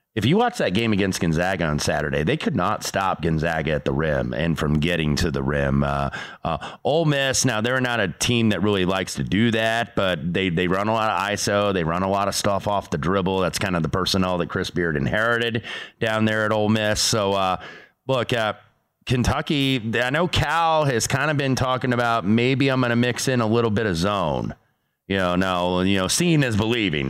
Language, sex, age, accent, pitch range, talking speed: English, male, 30-49, American, 85-115 Hz, 225 wpm